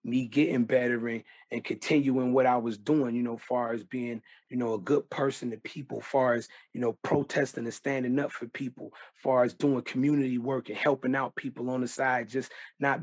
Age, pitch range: 30-49, 120-135 Hz